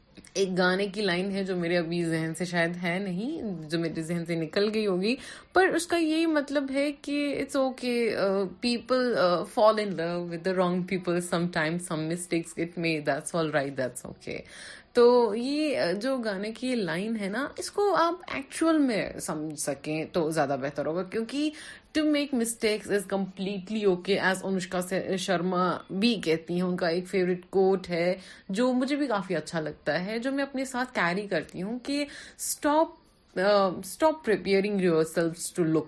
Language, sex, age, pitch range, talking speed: Urdu, female, 30-49, 170-235 Hz, 165 wpm